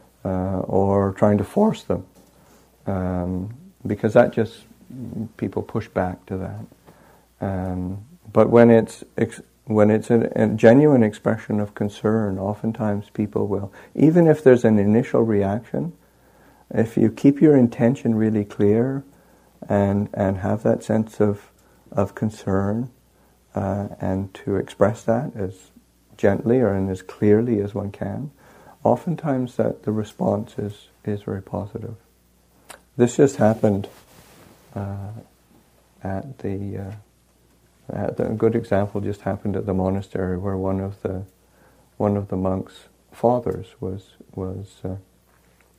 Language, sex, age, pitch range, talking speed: English, male, 50-69, 95-115 Hz, 135 wpm